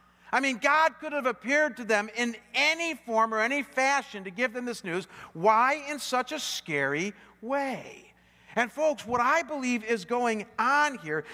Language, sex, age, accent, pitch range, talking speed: English, male, 50-69, American, 205-265 Hz, 180 wpm